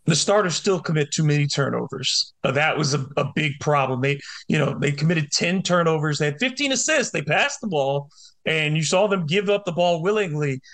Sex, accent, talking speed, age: male, American, 210 wpm, 30-49